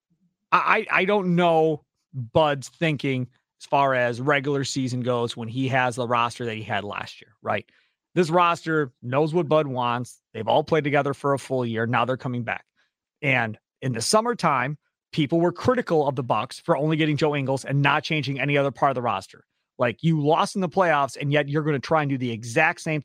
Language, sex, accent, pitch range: English, male, American, 135-175 Hz